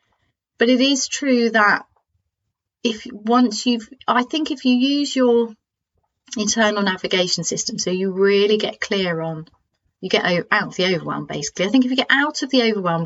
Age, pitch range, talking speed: 30-49, 190-240 Hz, 180 wpm